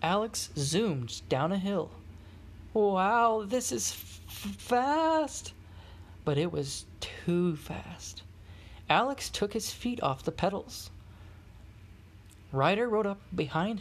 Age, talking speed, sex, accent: 20-39, 110 wpm, male, American